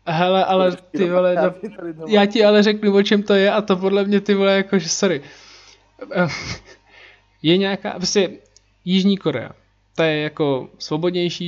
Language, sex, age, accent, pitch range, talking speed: Czech, male, 20-39, native, 135-165 Hz, 160 wpm